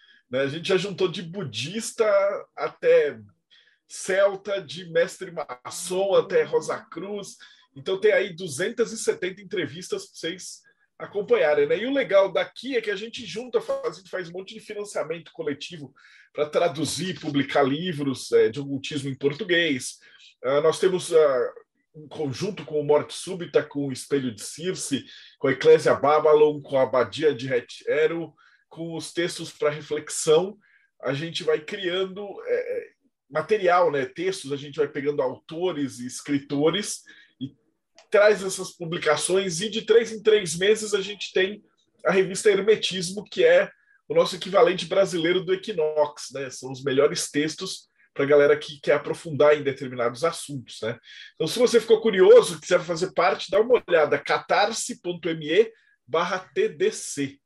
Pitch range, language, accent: 150-225 Hz, Portuguese, Brazilian